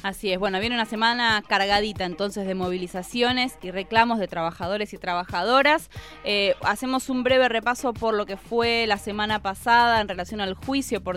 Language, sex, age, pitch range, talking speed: Spanish, female, 20-39, 190-250 Hz, 175 wpm